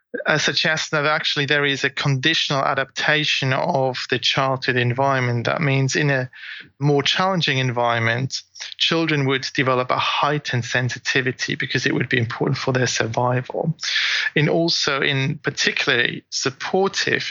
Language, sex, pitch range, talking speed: English, male, 125-150 Hz, 140 wpm